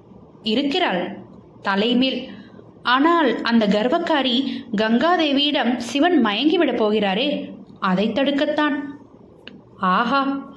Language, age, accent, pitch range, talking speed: Tamil, 20-39, native, 210-295 Hz, 60 wpm